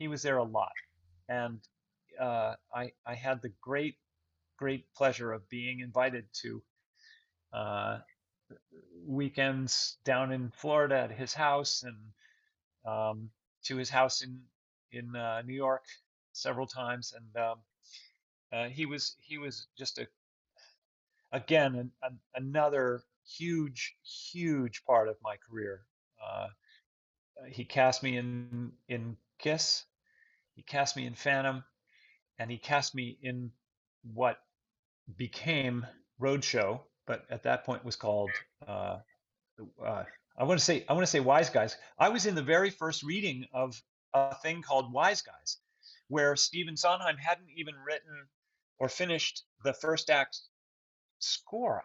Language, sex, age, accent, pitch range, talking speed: English, male, 40-59, American, 120-155 Hz, 140 wpm